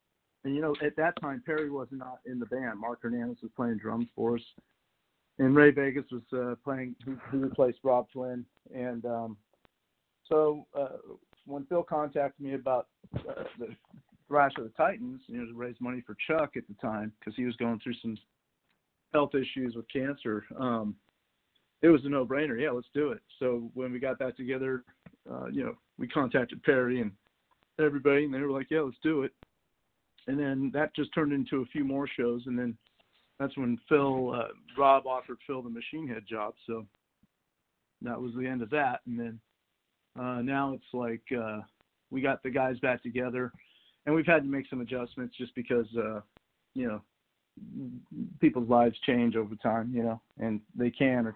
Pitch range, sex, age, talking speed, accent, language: 115-140 Hz, male, 50-69, 190 wpm, American, English